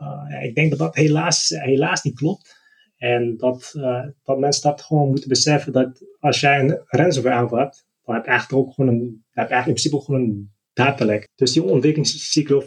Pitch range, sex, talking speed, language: 125-145 Hz, male, 200 wpm, Dutch